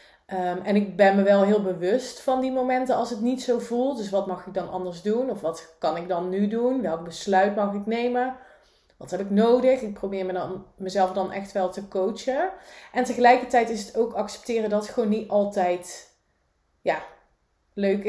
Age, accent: 30-49, Dutch